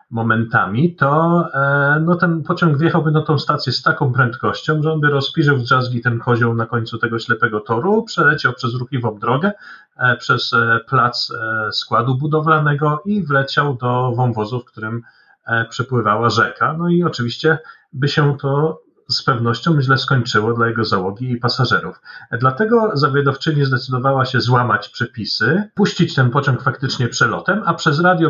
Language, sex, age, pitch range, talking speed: Polish, male, 40-59, 120-155 Hz, 150 wpm